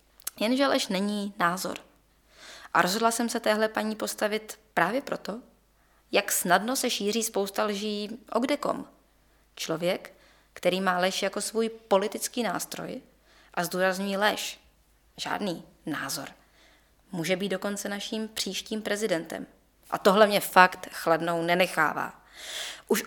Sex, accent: female, native